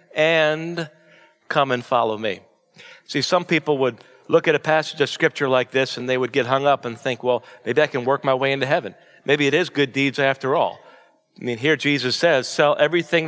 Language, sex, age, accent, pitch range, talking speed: English, male, 40-59, American, 135-170 Hz, 215 wpm